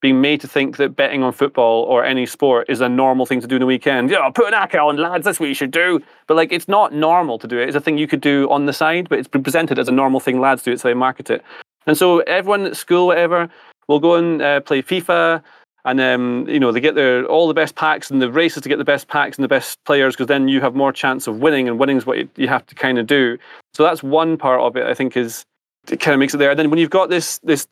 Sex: male